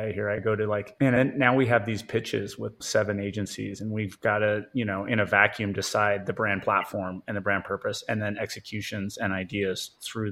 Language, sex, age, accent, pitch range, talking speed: English, male, 30-49, American, 100-125 Hz, 215 wpm